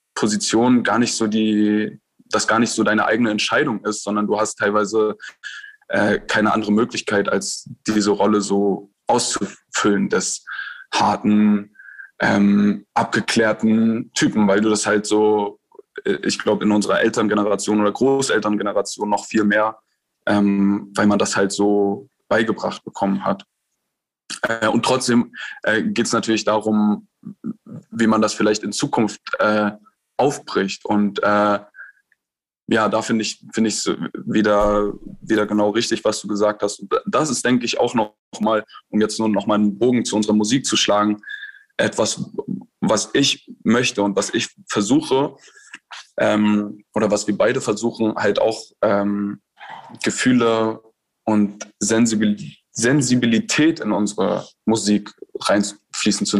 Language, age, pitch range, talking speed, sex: German, 10-29, 105-115 Hz, 140 wpm, male